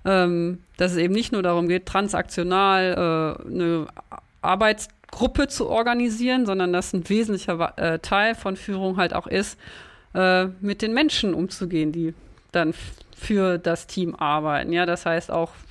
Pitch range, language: 180-205 Hz, German